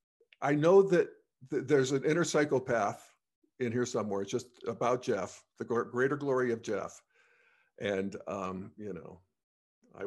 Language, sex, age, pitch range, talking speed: English, male, 50-69, 120-190 Hz, 155 wpm